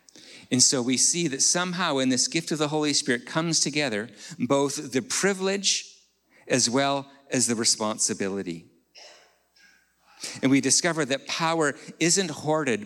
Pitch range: 120-155 Hz